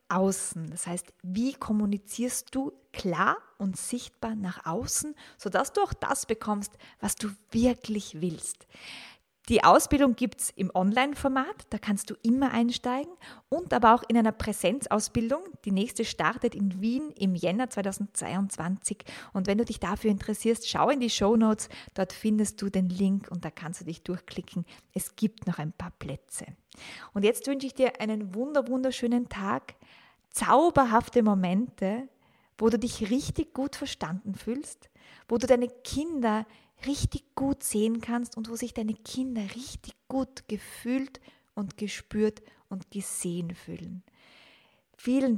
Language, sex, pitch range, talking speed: German, female, 195-245 Hz, 145 wpm